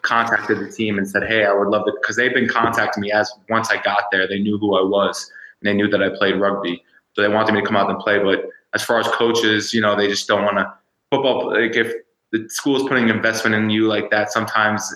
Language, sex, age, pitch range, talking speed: English, male, 20-39, 100-115 Hz, 265 wpm